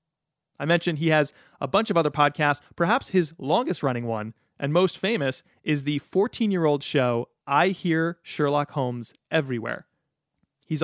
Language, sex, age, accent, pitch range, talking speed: English, male, 30-49, American, 130-165 Hz, 145 wpm